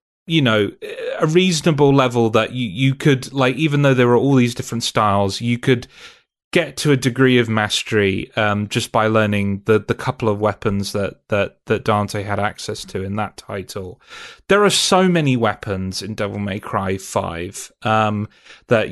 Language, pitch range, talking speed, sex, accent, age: English, 110-140 Hz, 180 wpm, male, British, 30-49